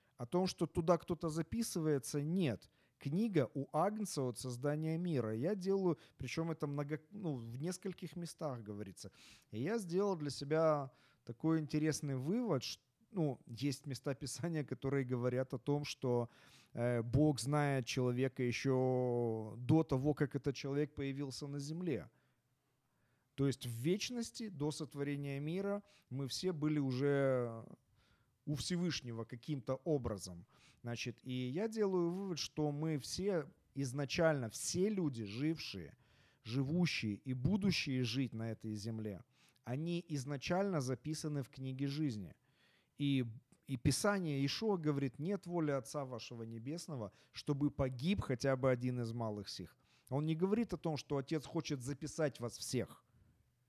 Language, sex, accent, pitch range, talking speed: Ukrainian, male, native, 125-160 Hz, 135 wpm